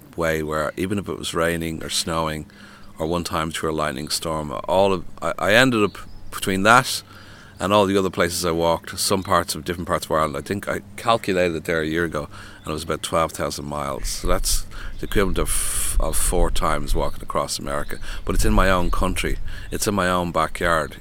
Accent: Irish